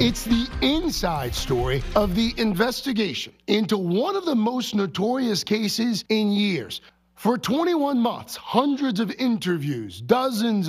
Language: English